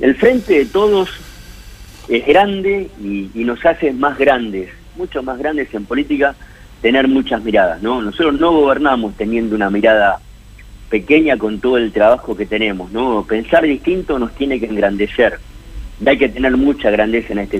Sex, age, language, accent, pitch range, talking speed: male, 40-59, Spanish, Argentinian, 100-125 Hz, 165 wpm